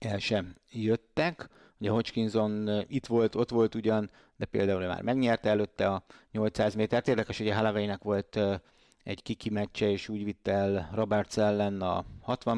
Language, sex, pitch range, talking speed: Hungarian, male, 100-110 Hz, 165 wpm